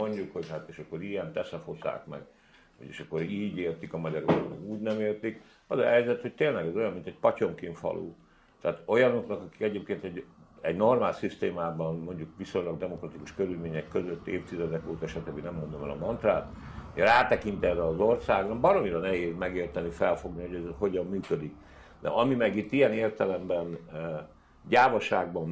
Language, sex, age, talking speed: Hungarian, male, 60-79, 165 wpm